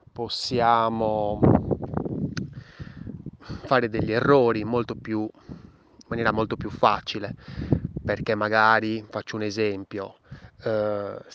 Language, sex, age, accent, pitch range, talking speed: Italian, male, 20-39, native, 105-125 Hz, 90 wpm